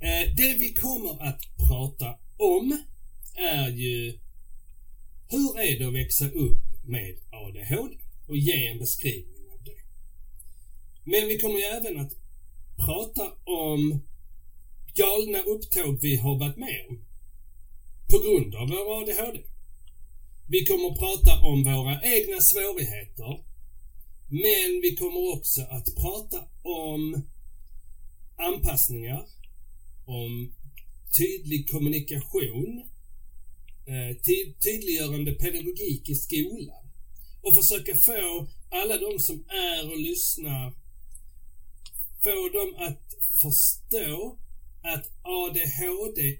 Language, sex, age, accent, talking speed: Swedish, male, 40-59, native, 105 wpm